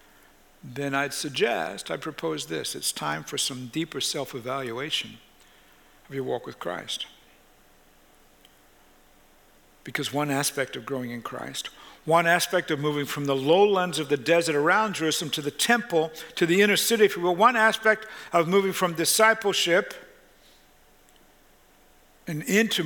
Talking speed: 140 wpm